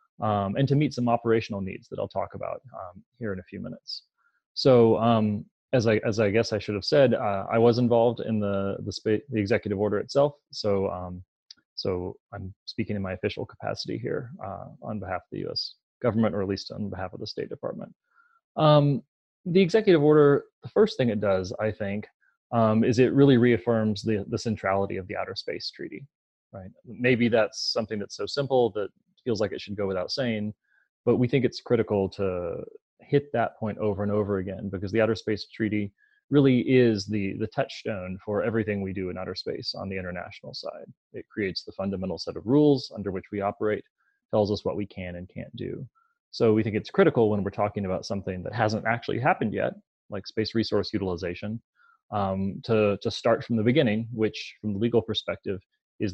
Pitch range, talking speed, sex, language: 100-120 Hz, 205 wpm, male, English